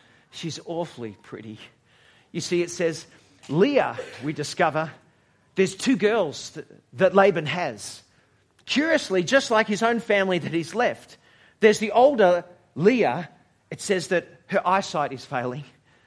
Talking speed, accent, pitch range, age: 135 wpm, Australian, 135-195 Hz, 40-59